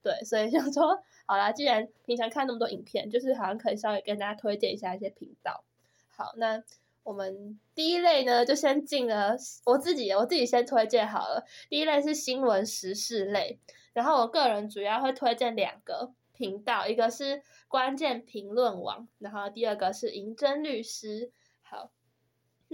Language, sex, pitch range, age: Chinese, female, 205-270 Hz, 10-29